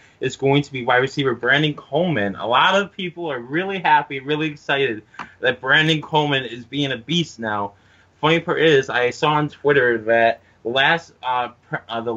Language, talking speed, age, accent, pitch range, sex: English, 190 wpm, 20-39, American, 120-145 Hz, male